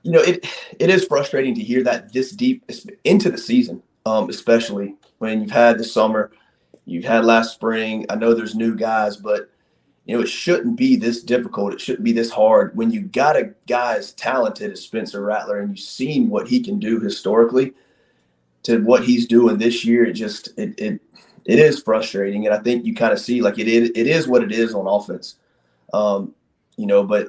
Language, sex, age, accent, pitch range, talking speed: English, male, 30-49, American, 110-130 Hz, 210 wpm